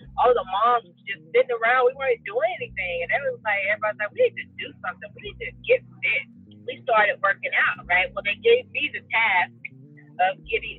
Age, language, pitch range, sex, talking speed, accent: 30-49, English, 175-280 Hz, female, 210 wpm, American